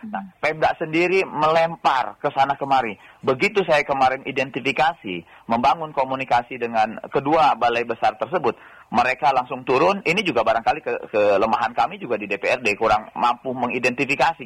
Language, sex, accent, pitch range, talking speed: Indonesian, male, native, 150-225 Hz, 135 wpm